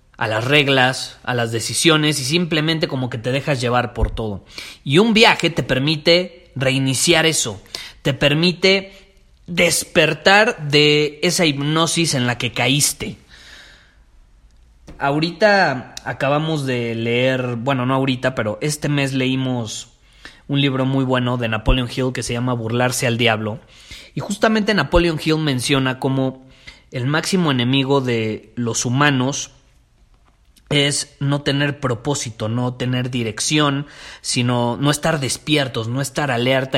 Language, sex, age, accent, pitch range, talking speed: Spanish, male, 30-49, Mexican, 125-155 Hz, 135 wpm